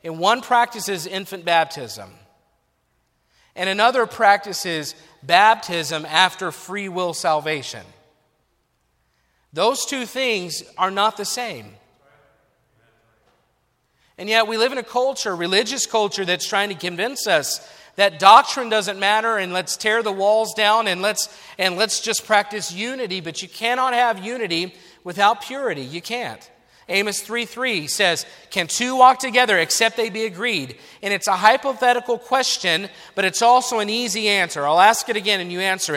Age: 40-59